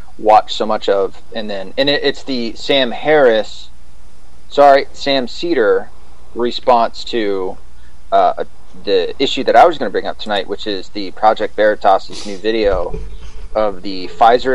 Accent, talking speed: American, 160 wpm